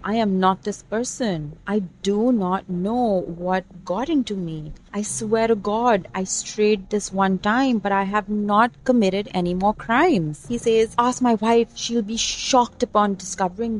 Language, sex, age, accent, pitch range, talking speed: English, female, 30-49, Indian, 180-220 Hz, 175 wpm